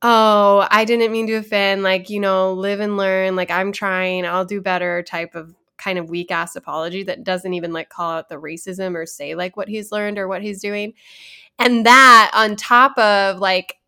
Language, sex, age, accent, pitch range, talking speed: English, female, 20-39, American, 185-220 Hz, 210 wpm